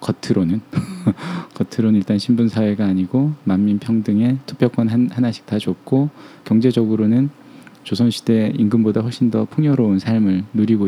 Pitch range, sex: 105-135 Hz, male